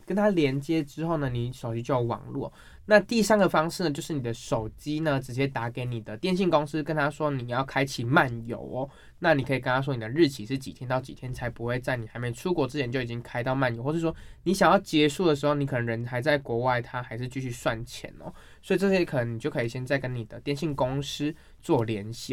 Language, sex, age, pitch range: Chinese, male, 20-39, 120-155 Hz